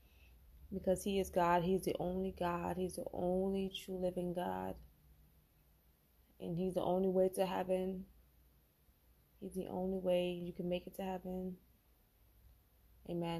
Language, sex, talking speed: English, female, 145 wpm